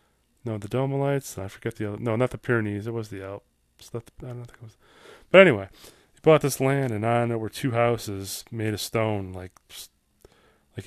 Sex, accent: male, American